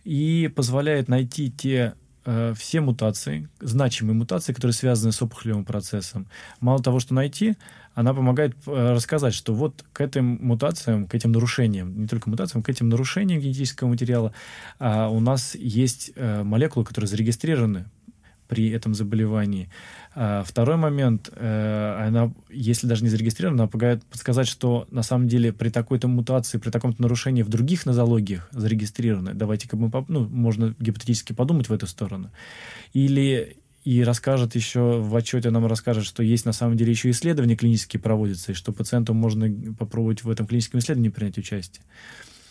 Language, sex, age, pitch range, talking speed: Russian, male, 20-39, 110-125 Hz, 150 wpm